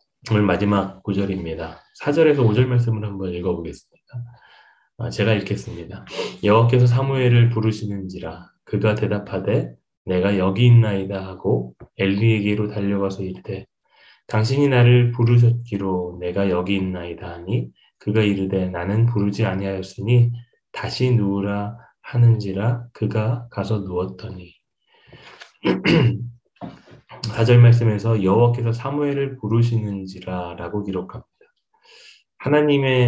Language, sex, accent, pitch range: Korean, male, native, 95-120 Hz